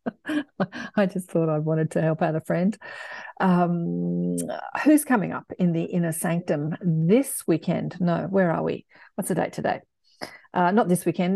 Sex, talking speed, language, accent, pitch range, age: female, 170 wpm, English, Australian, 165-195 Hz, 40-59